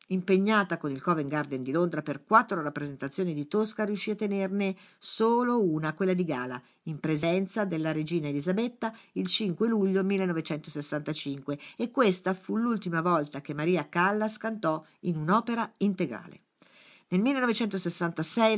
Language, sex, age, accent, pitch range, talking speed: Italian, female, 50-69, native, 150-200 Hz, 140 wpm